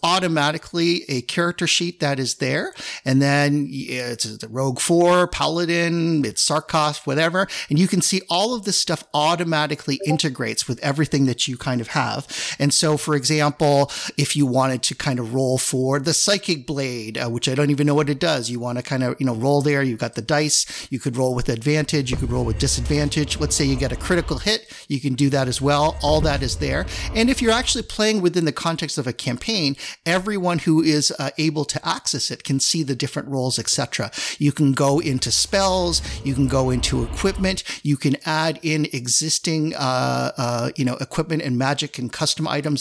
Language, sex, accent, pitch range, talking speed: English, male, American, 130-160 Hz, 210 wpm